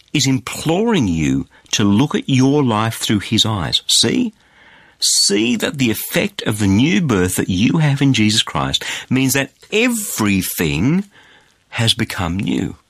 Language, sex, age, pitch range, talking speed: English, male, 50-69, 100-155 Hz, 150 wpm